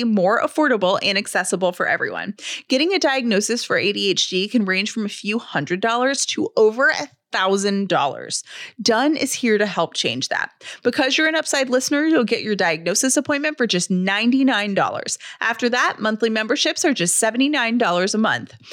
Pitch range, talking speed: 200-265 Hz, 165 wpm